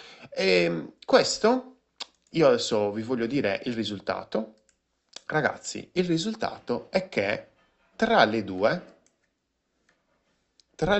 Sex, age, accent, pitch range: male, 30-49, native, 100-155 Hz